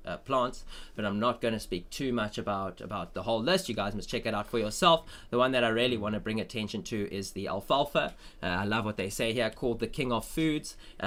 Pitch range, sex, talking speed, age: 105-125 Hz, male, 265 wpm, 20-39